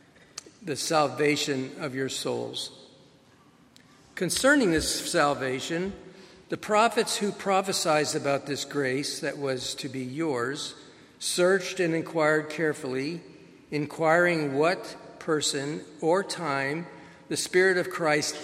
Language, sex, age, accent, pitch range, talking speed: English, male, 50-69, American, 135-170 Hz, 105 wpm